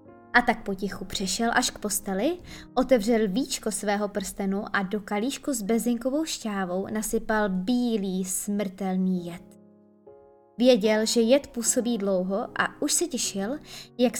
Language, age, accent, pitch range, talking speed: Czech, 20-39, native, 195-245 Hz, 130 wpm